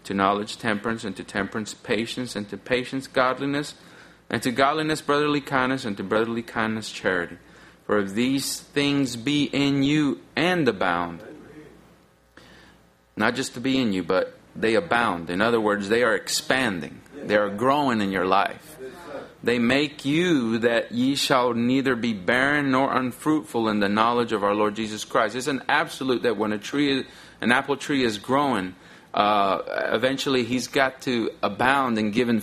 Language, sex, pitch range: English, male, 110-140 Hz